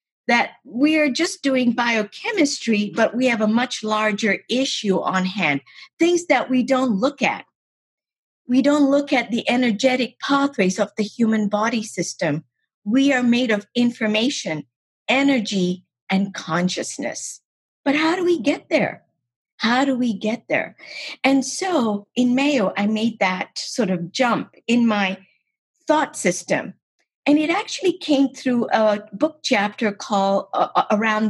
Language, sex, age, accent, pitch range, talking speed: English, female, 50-69, American, 200-270 Hz, 145 wpm